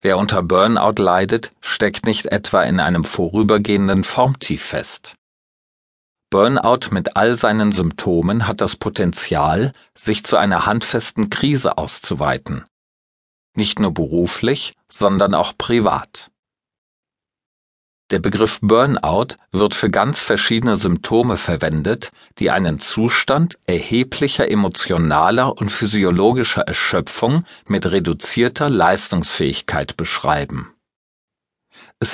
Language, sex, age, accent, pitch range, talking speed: German, male, 40-59, German, 90-125 Hz, 100 wpm